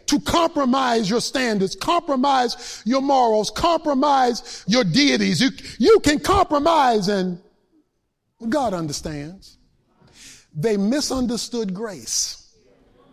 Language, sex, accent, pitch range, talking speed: English, male, American, 195-285 Hz, 90 wpm